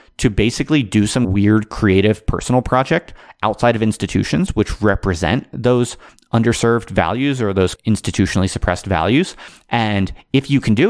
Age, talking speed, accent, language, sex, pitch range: 30-49, 145 wpm, American, English, male, 95-115 Hz